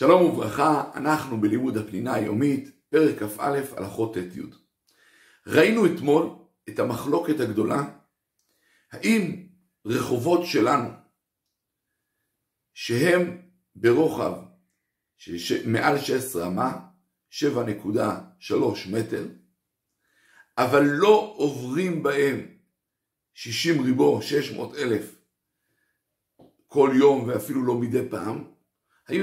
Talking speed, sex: 85 wpm, male